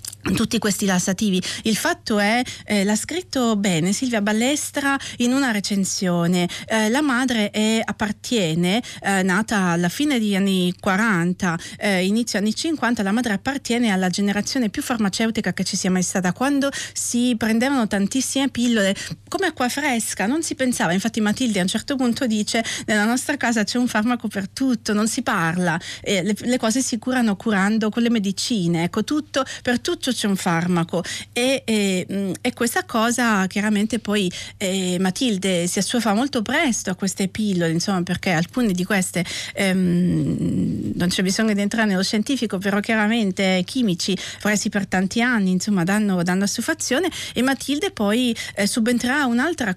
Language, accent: Italian, native